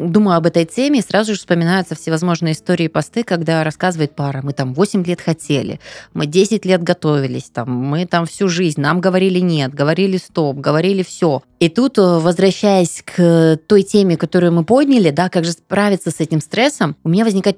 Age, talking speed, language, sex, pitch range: 20-39, 185 wpm, Russian, female, 165-200 Hz